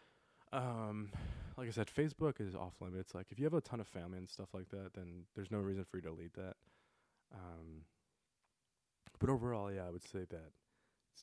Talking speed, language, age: 205 wpm, English, 20-39